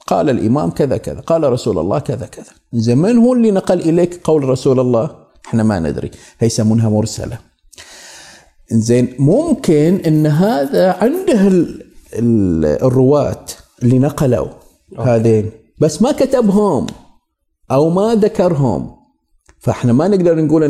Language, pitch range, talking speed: Arabic, 110-160 Hz, 120 wpm